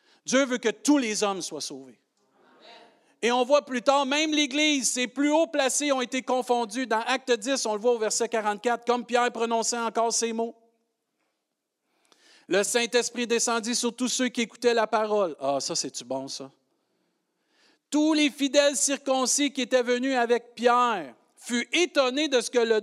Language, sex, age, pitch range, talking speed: French, male, 50-69, 155-245 Hz, 175 wpm